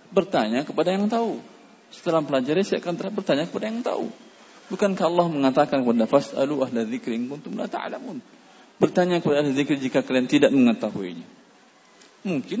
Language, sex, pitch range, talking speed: English, male, 145-185 Hz, 135 wpm